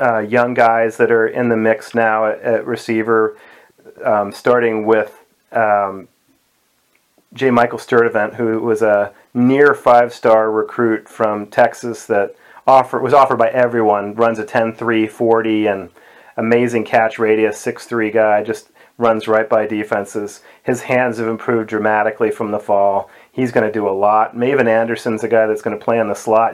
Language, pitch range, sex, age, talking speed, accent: English, 110-120 Hz, male, 40-59, 160 wpm, American